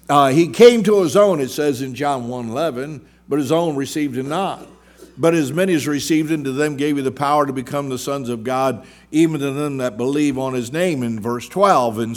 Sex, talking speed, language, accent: male, 235 wpm, English, American